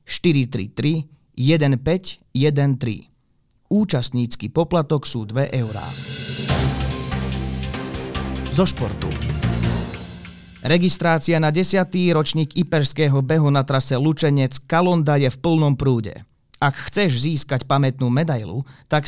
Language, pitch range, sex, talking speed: Slovak, 120-155 Hz, male, 90 wpm